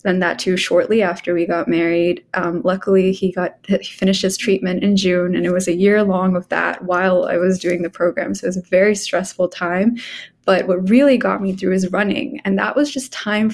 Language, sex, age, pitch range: English, female, 20-39, 185-210 Hz